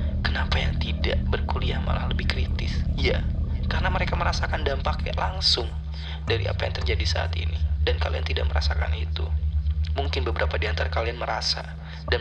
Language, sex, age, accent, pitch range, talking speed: Indonesian, male, 20-39, native, 75-80 Hz, 145 wpm